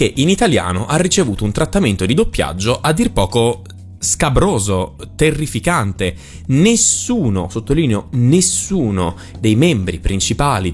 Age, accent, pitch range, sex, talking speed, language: 20-39, native, 90-130 Hz, male, 105 wpm, Italian